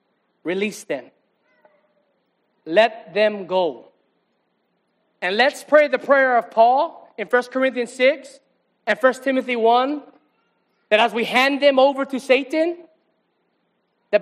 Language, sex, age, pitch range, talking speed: English, male, 30-49, 220-270 Hz, 120 wpm